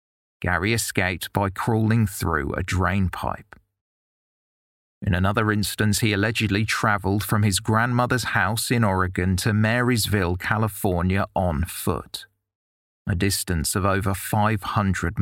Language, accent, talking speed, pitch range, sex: English, British, 115 wpm, 95-110 Hz, male